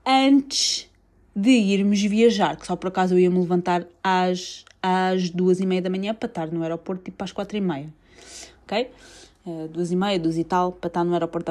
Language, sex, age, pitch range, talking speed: Portuguese, female, 20-39, 165-215 Hz, 215 wpm